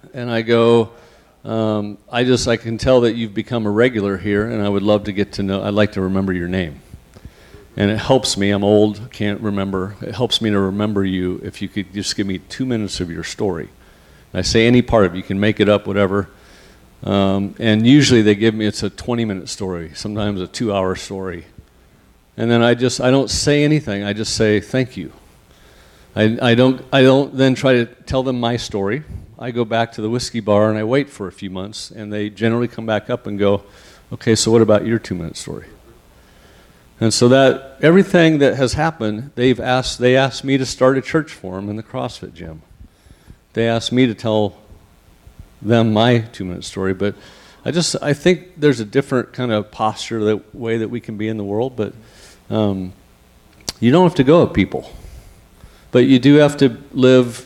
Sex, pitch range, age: male, 100-125 Hz, 50-69